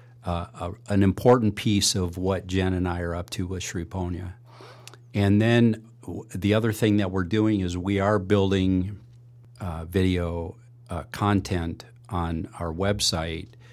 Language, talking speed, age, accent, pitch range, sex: English, 155 wpm, 50-69, American, 85-115 Hz, male